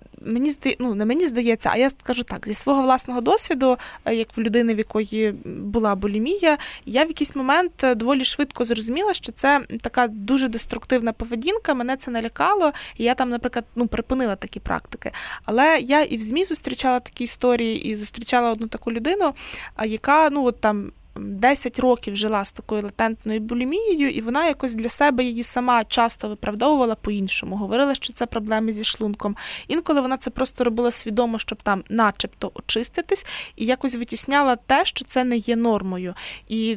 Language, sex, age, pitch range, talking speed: Ukrainian, female, 20-39, 225-265 Hz, 170 wpm